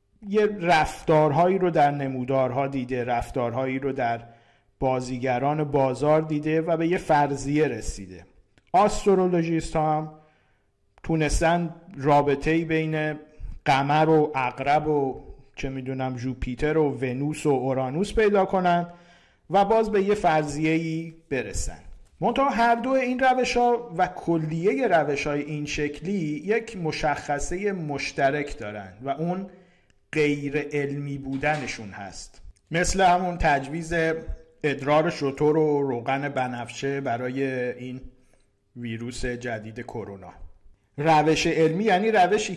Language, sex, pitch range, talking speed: Persian, male, 125-165 Hz, 115 wpm